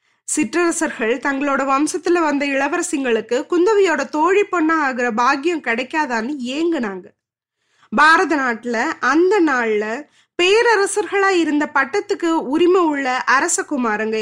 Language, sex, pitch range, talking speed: Tamil, female, 250-360 Hz, 95 wpm